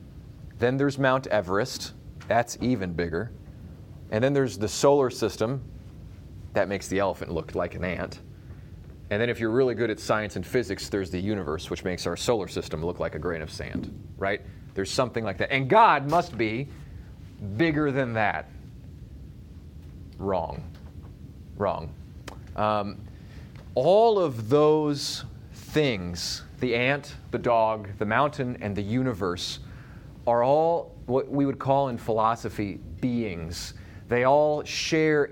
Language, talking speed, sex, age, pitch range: English, 145 wpm, male, 30-49, 100-135 Hz